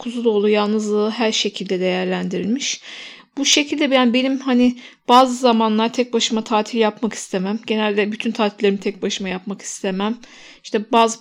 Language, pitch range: Turkish, 210-240 Hz